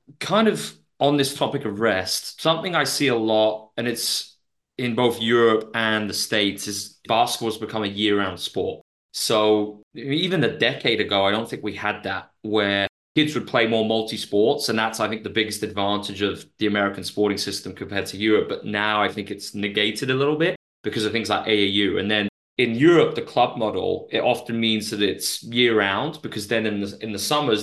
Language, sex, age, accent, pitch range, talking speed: English, male, 20-39, British, 100-115 Hz, 205 wpm